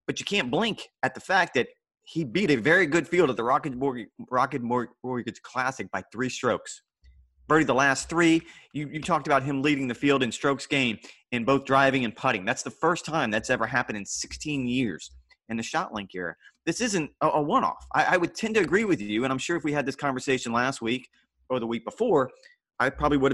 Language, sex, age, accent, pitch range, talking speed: English, male, 30-49, American, 115-150 Hz, 225 wpm